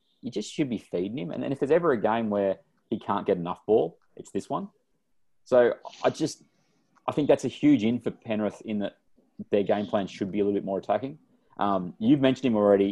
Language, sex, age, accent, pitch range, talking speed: English, male, 30-49, Australian, 85-105 Hz, 230 wpm